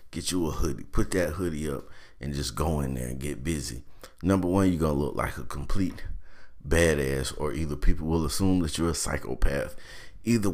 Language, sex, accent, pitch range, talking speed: English, male, American, 70-90 Hz, 205 wpm